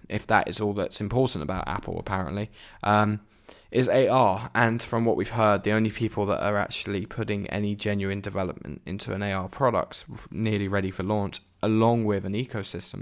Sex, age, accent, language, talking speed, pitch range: male, 10-29, British, English, 180 wpm, 95-115 Hz